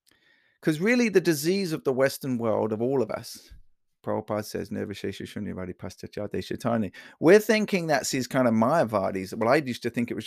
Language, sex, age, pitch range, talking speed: English, male, 30-49, 105-140 Hz, 165 wpm